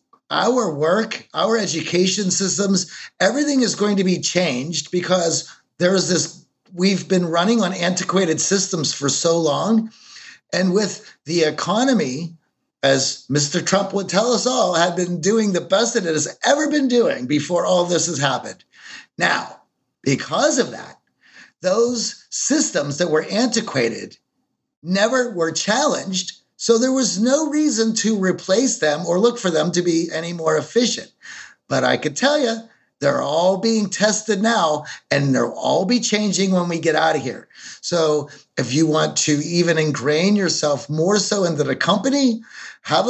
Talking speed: 160 wpm